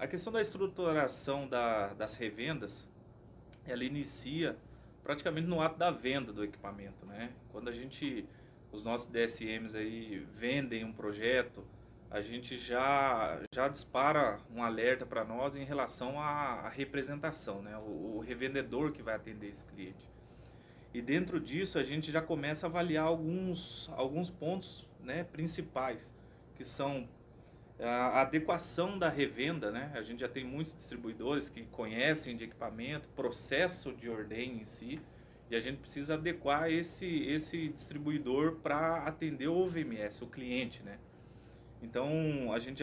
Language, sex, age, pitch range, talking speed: Portuguese, male, 30-49, 115-155 Hz, 145 wpm